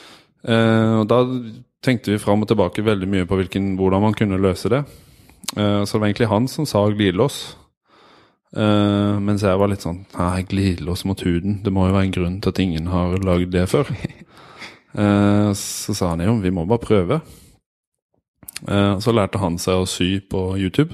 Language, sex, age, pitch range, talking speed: English, male, 20-39, 95-110 Hz, 185 wpm